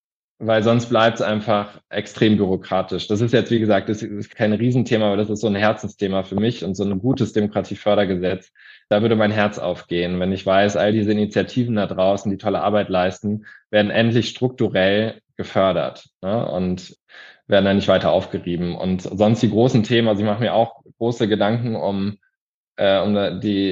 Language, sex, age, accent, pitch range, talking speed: German, male, 20-39, German, 100-115 Hz, 185 wpm